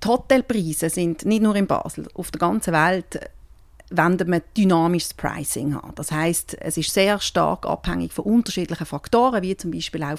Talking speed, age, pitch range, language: 170 wpm, 40-59, 175-230 Hz, German